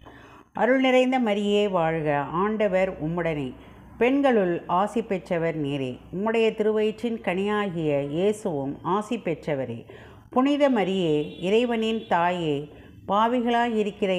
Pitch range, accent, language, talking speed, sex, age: 155-220 Hz, native, Tamil, 90 wpm, female, 50-69